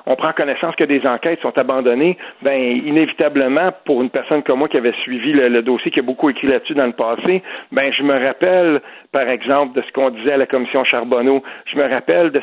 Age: 50-69